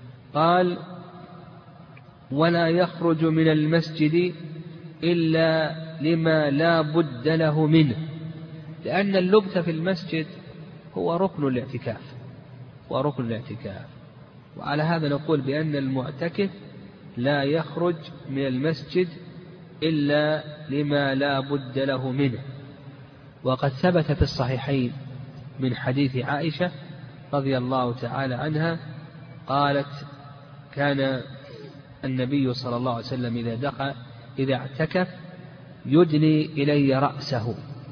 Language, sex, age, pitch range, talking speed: Arabic, male, 40-59, 135-160 Hz, 95 wpm